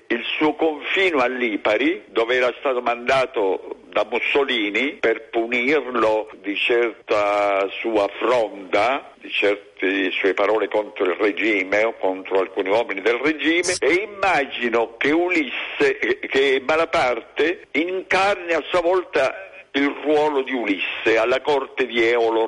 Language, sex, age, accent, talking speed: Italian, male, 60-79, native, 130 wpm